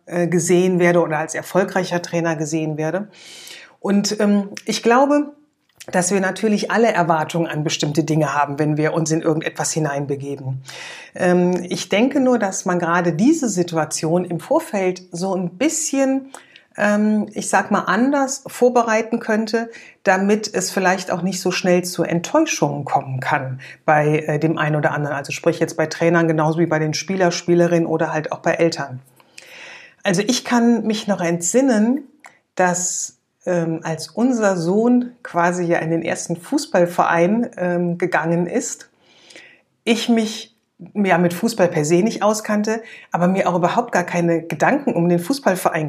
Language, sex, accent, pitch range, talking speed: German, female, German, 165-215 Hz, 155 wpm